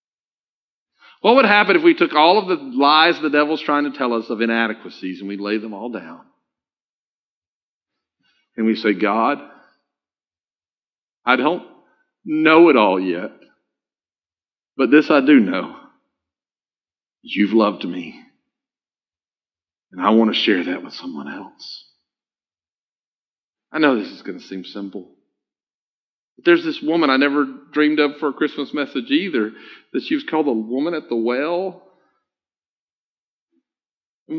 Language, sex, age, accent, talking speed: English, male, 50-69, American, 140 wpm